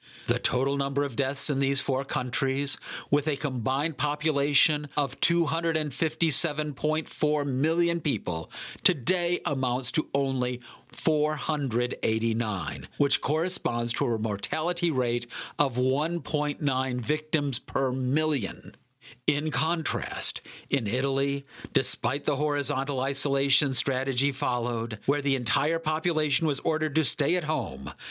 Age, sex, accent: 50-69, male, American